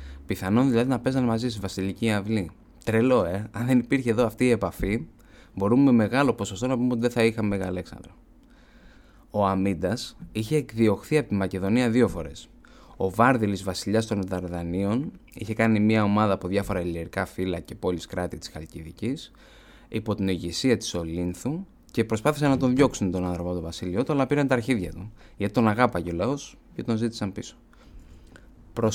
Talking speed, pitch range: 175 wpm, 95-115 Hz